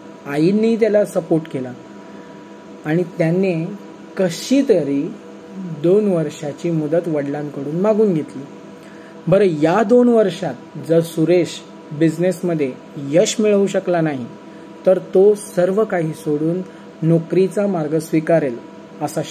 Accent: native